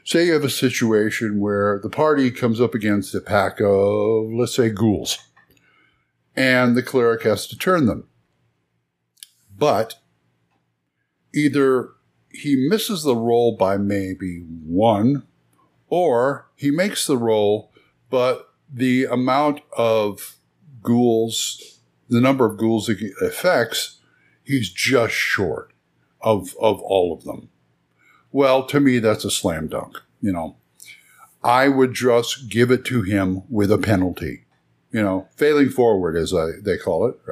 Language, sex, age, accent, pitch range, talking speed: English, male, 60-79, American, 100-135 Hz, 140 wpm